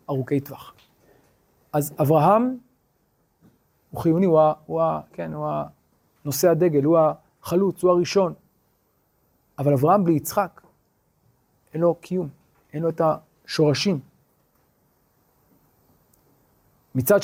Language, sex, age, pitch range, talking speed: Hebrew, male, 40-59, 140-190 Hz, 110 wpm